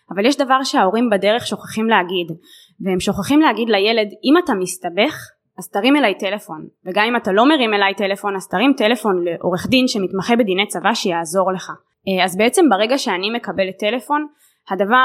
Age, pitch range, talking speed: 20-39, 190-235 Hz, 170 wpm